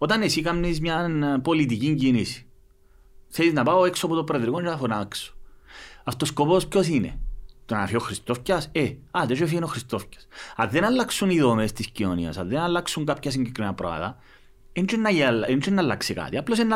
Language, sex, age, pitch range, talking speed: Greek, male, 30-49, 115-180 Hz, 160 wpm